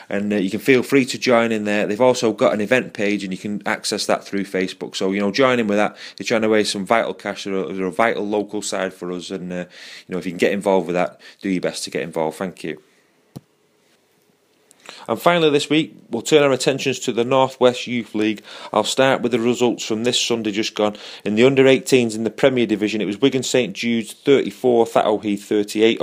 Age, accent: 30-49, British